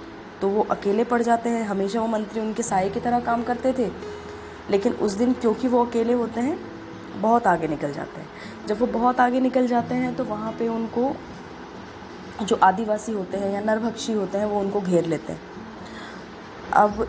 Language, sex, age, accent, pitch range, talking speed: Hindi, female, 20-39, native, 195-240 Hz, 190 wpm